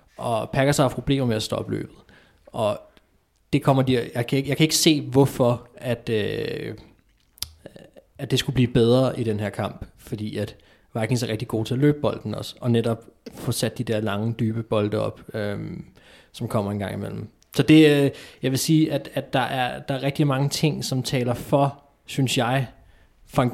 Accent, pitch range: native, 110-135 Hz